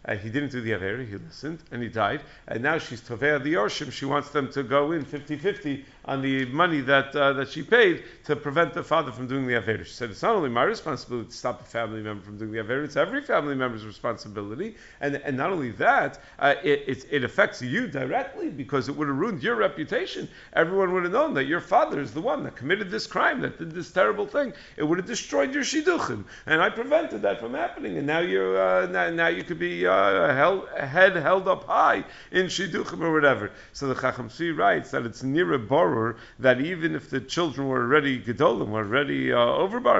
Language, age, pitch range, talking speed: English, 50-69, 120-150 Hz, 225 wpm